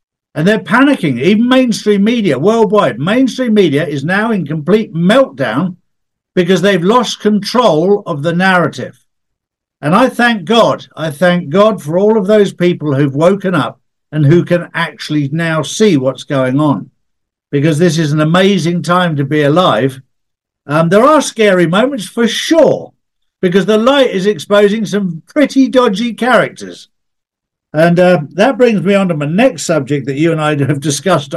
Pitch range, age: 145-200 Hz, 60-79